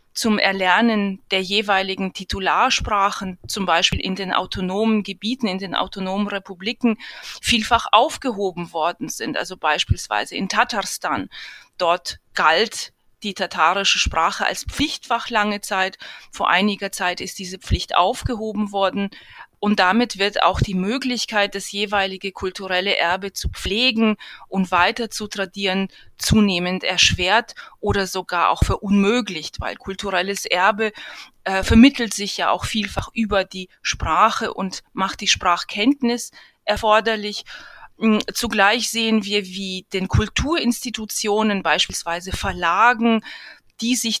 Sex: female